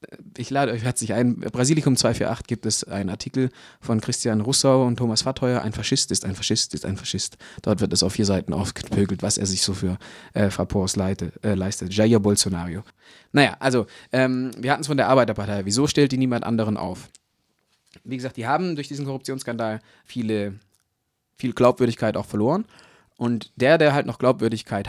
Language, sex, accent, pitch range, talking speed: German, male, German, 105-130 Hz, 185 wpm